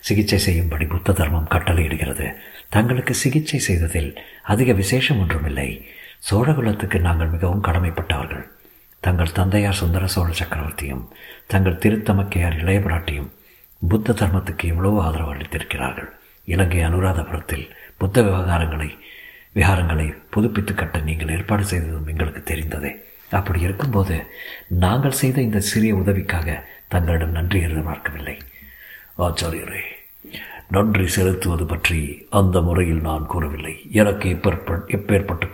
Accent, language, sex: native, Tamil, male